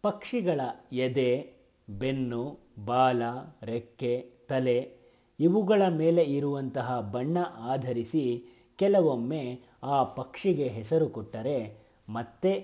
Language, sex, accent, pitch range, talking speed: Kannada, male, native, 115-150 Hz, 80 wpm